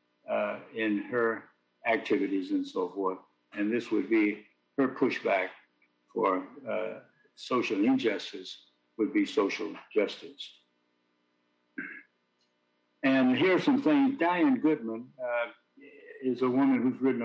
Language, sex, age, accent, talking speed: English, male, 60-79, American, 120 wpm